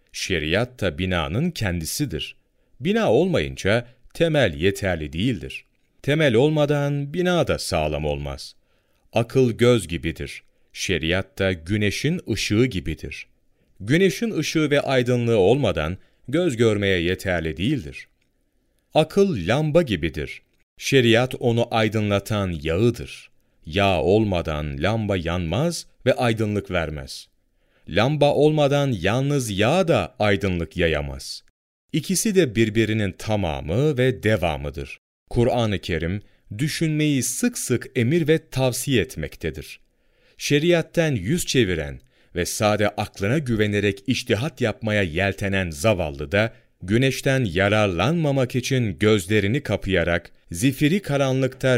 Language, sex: Turkish, male